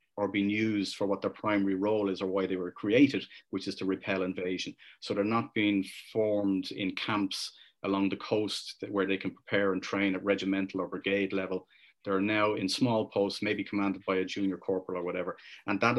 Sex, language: male, English